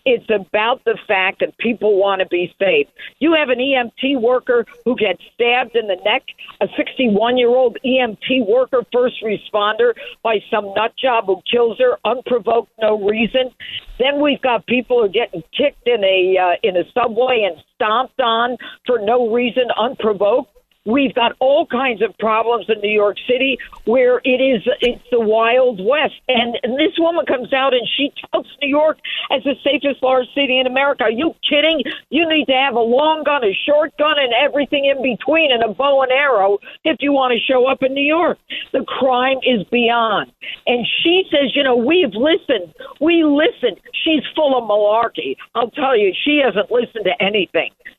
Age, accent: 50-69, American